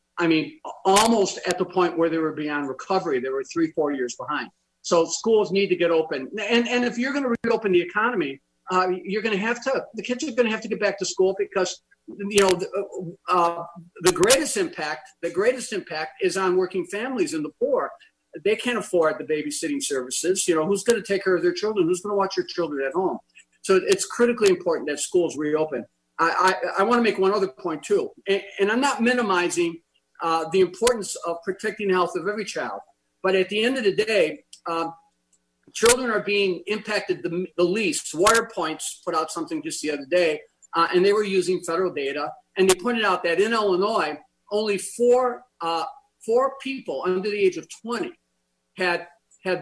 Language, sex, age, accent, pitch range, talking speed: English, male, 50-69, American, 170-235 Hz, 205 wpm